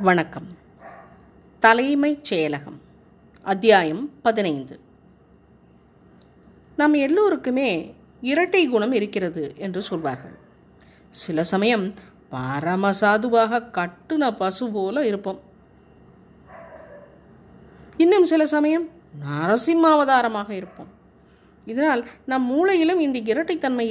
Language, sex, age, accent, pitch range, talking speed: Tamil, female, 30-49, native, 210-300 Hz, 65 wpm